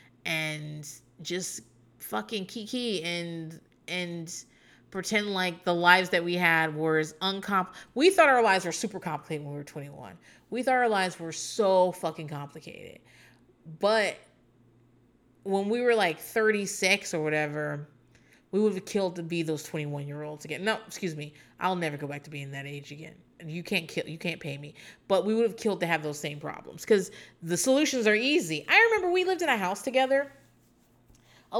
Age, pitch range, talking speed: 30-49, 155-245 Hz, 180 wpm